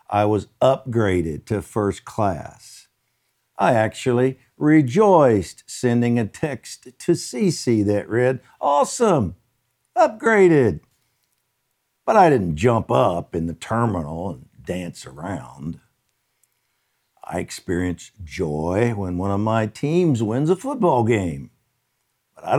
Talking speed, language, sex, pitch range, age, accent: 115 wpm, English, male, 105-165 Hz, 60-79, American